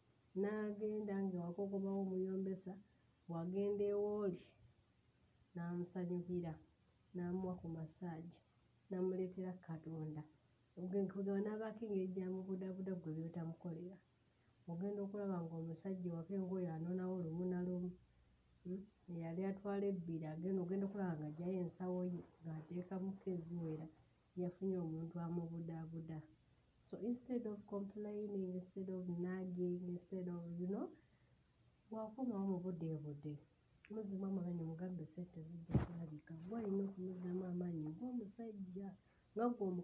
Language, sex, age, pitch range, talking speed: English, female, 30-49, 165-195 Hz, 90 wpm